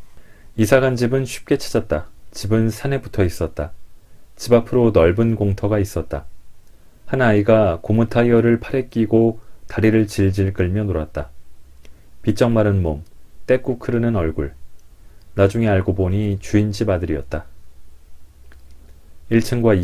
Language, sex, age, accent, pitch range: Korean, male, 30-49, native, 85-110 Hz